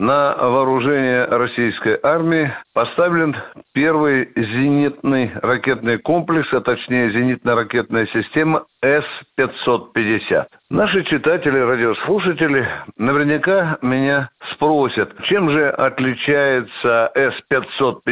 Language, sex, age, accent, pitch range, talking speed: Russian, male, 60-79, native, 120-165 Hz, 80 wpm